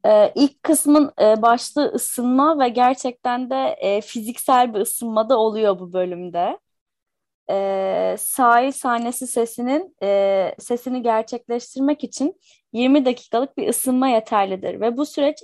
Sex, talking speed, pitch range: female, 130 wpm, 210-275 Hz